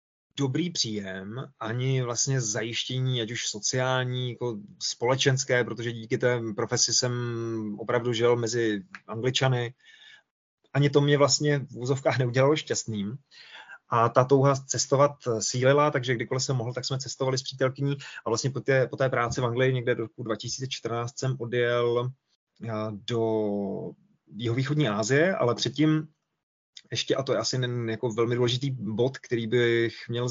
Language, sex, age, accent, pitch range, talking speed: Czech, male, 20-39, native, 115-130 Hz, 145 wpm